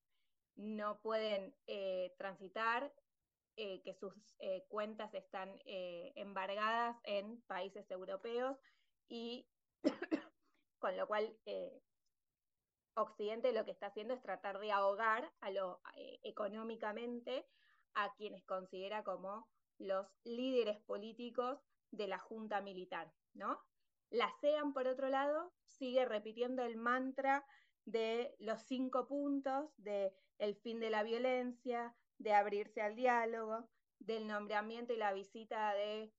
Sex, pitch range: female, 200-255 Hz